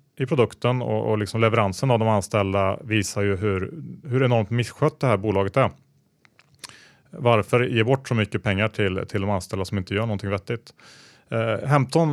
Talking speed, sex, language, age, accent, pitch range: 175 wpm, male, Swedish, 30-49, Norwegian, 100-125 Hz